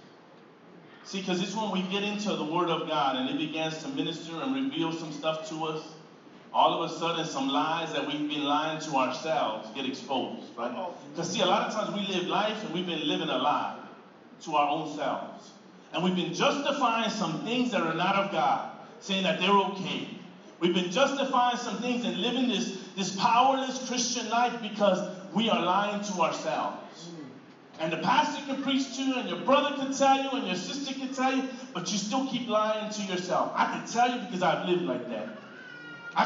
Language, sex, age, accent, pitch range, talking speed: English, male, 40-59, American, 170-240 Hz, 205 wpm